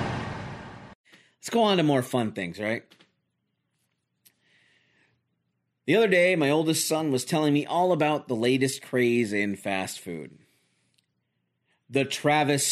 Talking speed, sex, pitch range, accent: 125 wpm, male, 125-165 Hz, American